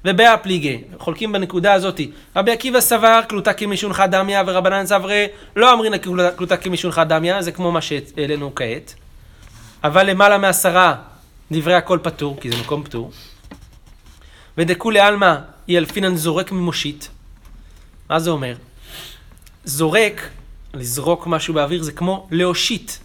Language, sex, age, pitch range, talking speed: Hebrew, male, 30-49, 155-200 Hz, 125 wpm